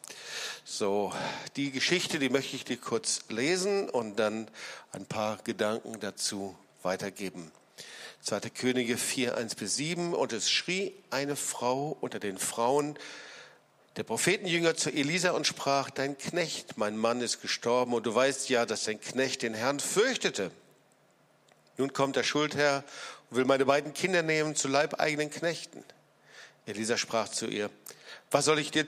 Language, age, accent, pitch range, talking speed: German, 50-69, German, 120-175 Hz, 150 wpm